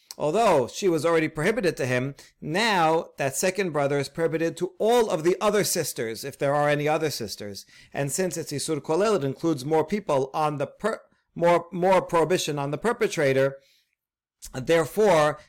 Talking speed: 170 wpm